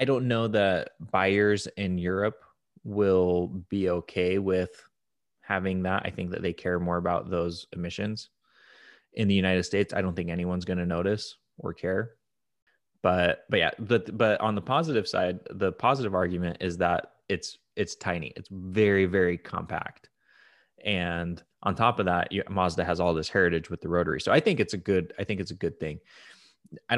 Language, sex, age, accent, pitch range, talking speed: English, male, 20-39, American, 90-100 Hz, 180 wpm